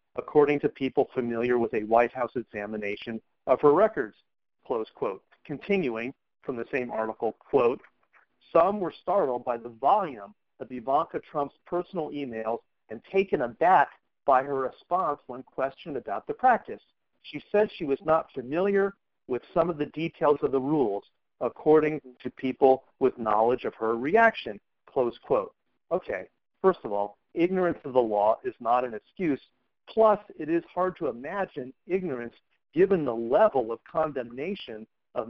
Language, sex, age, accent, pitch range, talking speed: English, male, 40-59, American, 120-175 Hz, 155 wpm